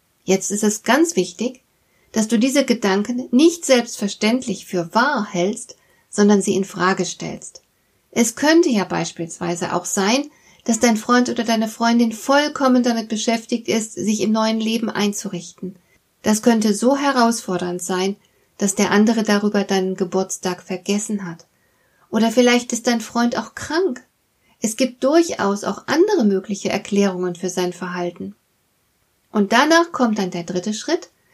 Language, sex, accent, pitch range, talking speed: German, female, German, 190-240 Hz, 145 wpm